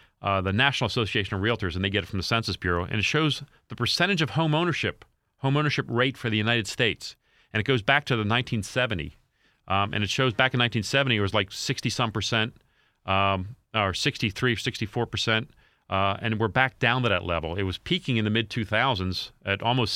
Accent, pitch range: American, 95-120 Hz